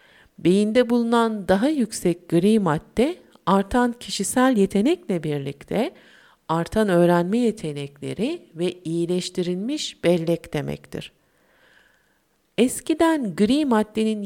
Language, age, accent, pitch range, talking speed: Turkish, 50-69, native, 180-240 Hz, 85 wpm